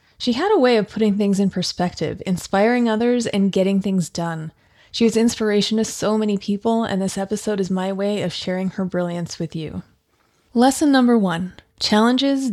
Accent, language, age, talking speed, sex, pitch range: American, English, 30-49, 180 wpm, female, 185-225 Hz